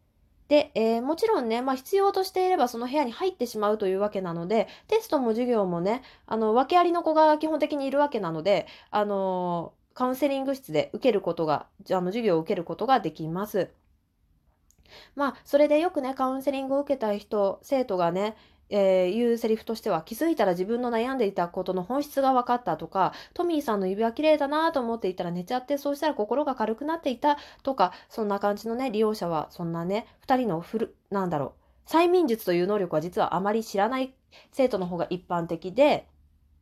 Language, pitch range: Japanese, 185-260 Hz